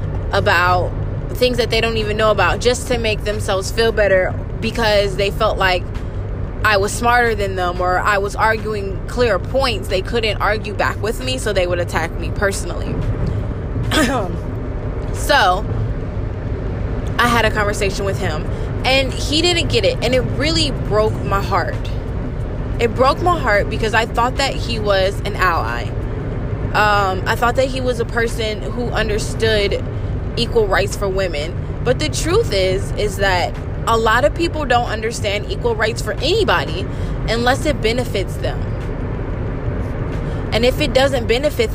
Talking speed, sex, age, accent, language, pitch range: 160 wpm, female, 20-39, American, English, 110-135 Hz